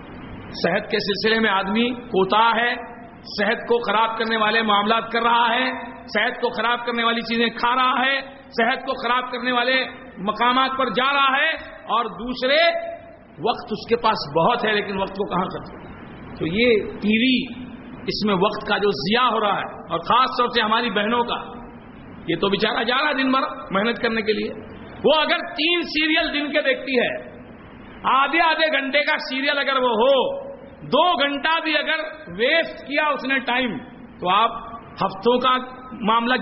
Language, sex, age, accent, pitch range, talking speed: English, male, 50-69, Indian, 225-285 Hz, 165 wpm